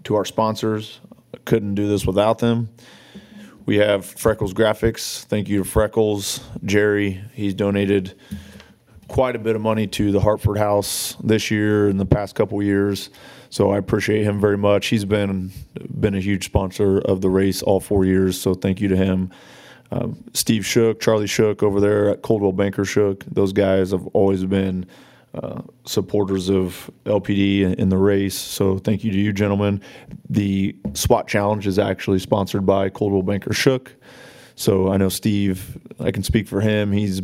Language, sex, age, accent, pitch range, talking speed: English, male, 30-49, American, 100-110 Hz, 175 wpm